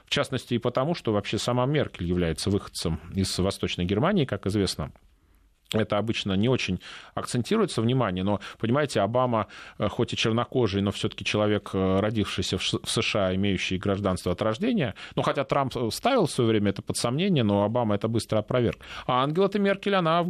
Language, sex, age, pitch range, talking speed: Russian, male, 20-39, 95-125 Hz, 170 wpm